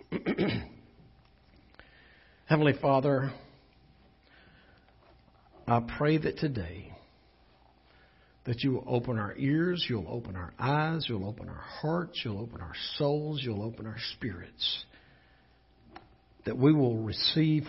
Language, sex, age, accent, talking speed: English, male, 60-79, American, 110 wpm